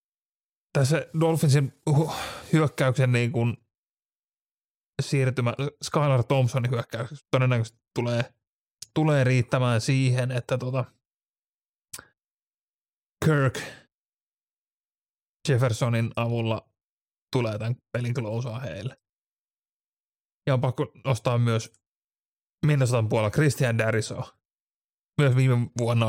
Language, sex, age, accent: Finnish, male, 30-49, native